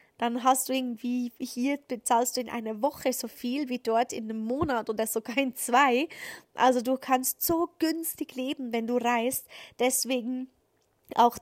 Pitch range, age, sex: 230-255 Hz, 20-39, female